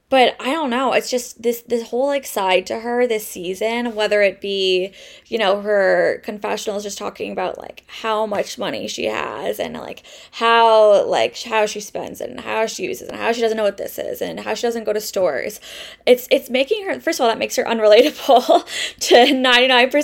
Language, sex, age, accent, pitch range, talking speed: English, female, 20-39, American, 205-250 Hz, 205 wpm